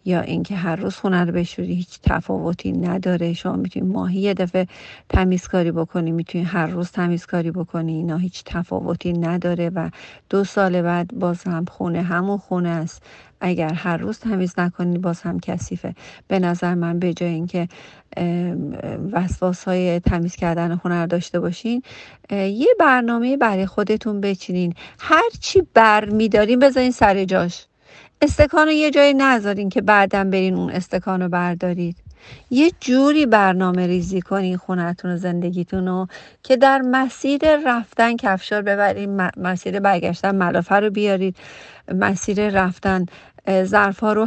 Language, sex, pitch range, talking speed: Persian, female, 175-210 Hz, 140 wpm